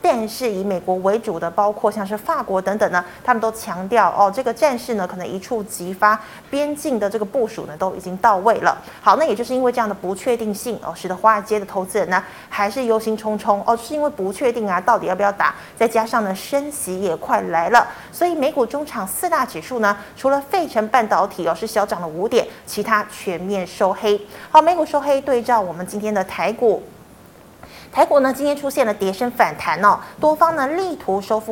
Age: 30-49